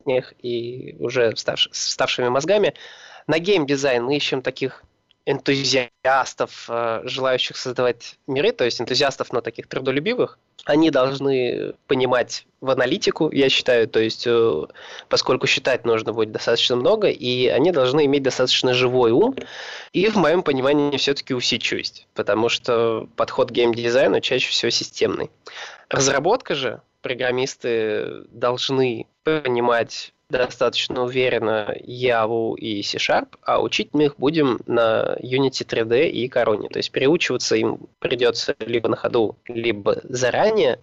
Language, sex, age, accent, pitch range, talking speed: Russian, male, 20-39, native, 120-150 Hz, 130 wpm